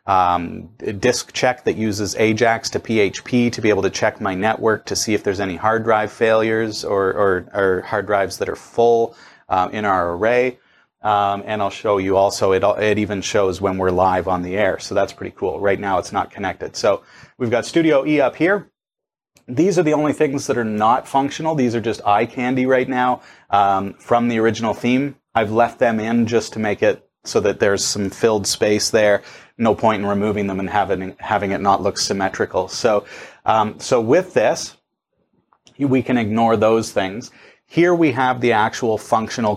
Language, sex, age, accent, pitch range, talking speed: English, male, 30-49, American, 100-125 Hz, 200 wpm